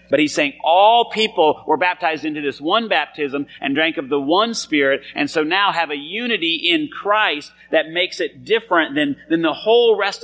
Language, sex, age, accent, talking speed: English, male, 30-49, American, 200 wpm